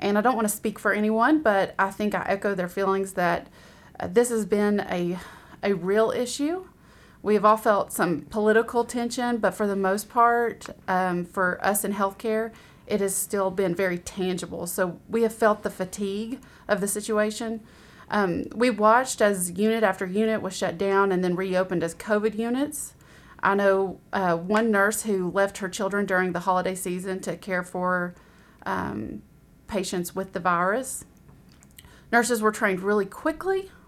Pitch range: 180-220 Hz